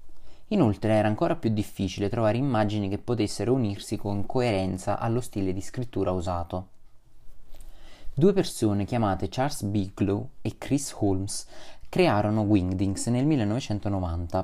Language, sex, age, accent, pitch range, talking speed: Italian, male, 20-39, native, 95-125 Hz, 120 wpm